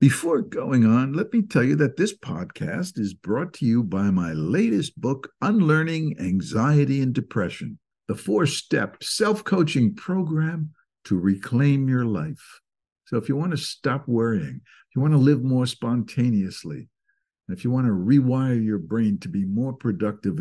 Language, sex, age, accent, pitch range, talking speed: English, male, 60-79, American, 100-150 Hz, 165 wpm